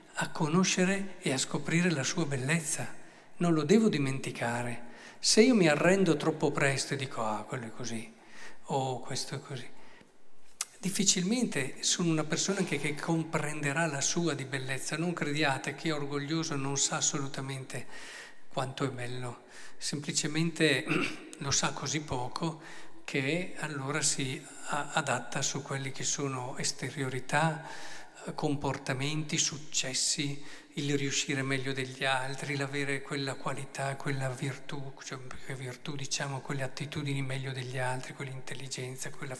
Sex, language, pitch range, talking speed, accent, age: male, Italian, 135-160 Hz, 130 wpm, native, 50-69